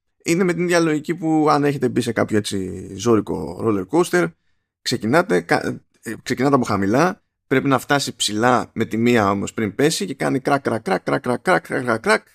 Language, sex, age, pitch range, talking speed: Greek, male, 20-39, 100-140 Hz, 140 wpm